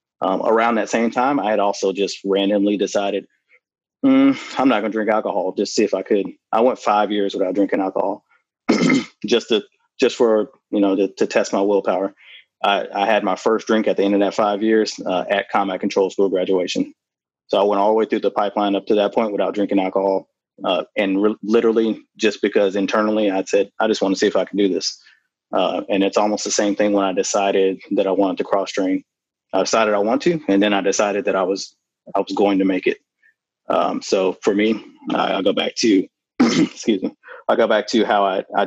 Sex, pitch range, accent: male, 100-115 Hz, American